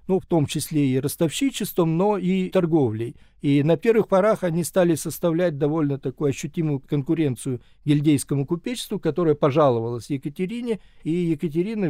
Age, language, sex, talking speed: 50-69, Russian, male, 135 wpm